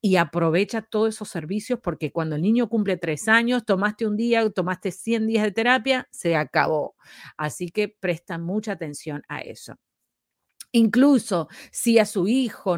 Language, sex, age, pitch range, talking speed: Spanish, female, 40-59, 170-220 Hz, 160 wpm